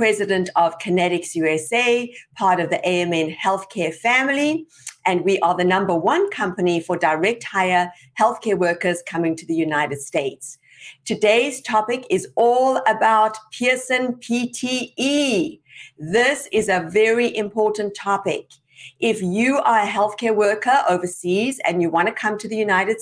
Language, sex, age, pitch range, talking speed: English, female, 50-69, 170-220 Hz, 145 wpm